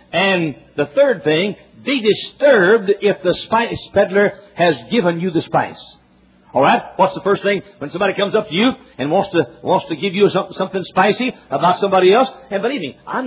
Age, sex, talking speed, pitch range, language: 60-79, male, 195 wpm, 155-215 Hz, English